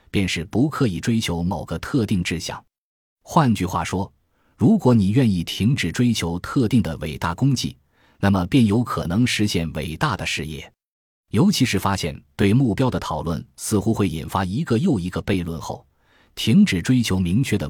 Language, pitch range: Chinese, 85-115 Hz